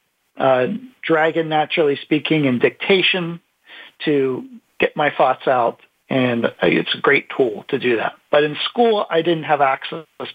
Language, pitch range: English, 135-175 Hz